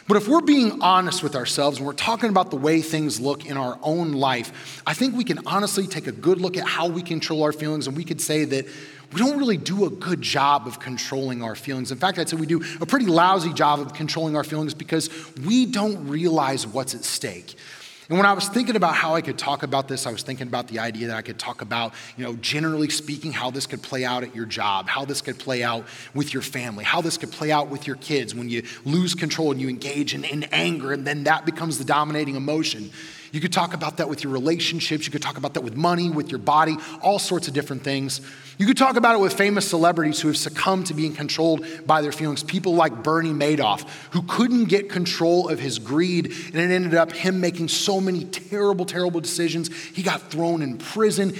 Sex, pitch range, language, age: male, 140-175 Hz, English, 30-49